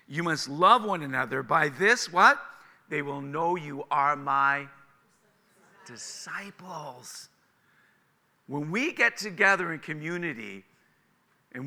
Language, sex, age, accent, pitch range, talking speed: English, male, 50-69, American, 140-200 Hz, 115 wpm